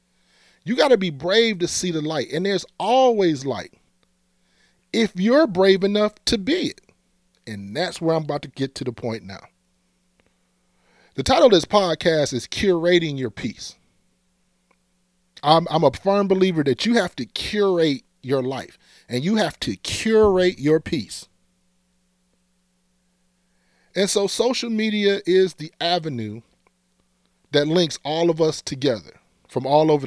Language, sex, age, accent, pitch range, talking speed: English, male, 40-59, American, 110-180 Hz, 150 wpm